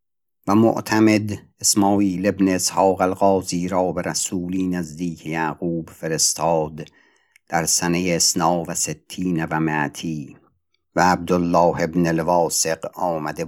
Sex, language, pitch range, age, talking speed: male, Persian, 85-105 Hz, 60-79, 105 wpm